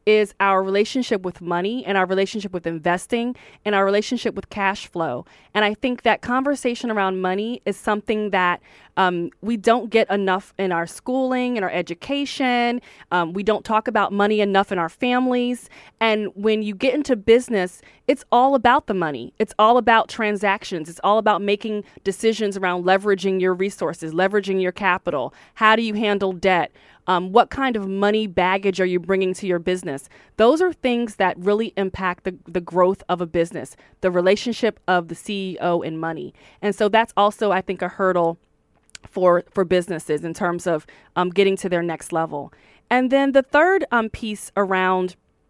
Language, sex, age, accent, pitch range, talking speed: English, female, 30-49, American, 185-230 Hz, 180 wpm